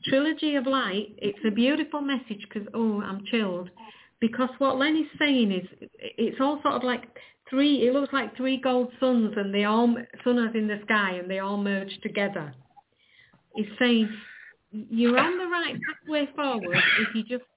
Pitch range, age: 205-250 Hz, 50-69